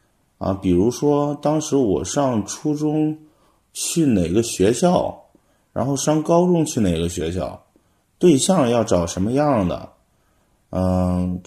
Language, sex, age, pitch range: Chinese, male, 30-49, 90-115 Hz